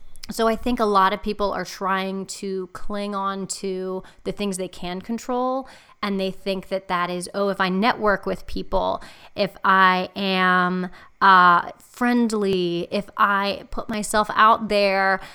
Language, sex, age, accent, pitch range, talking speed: English, female, 20-39, American, 185-205 Hz, 160 wpm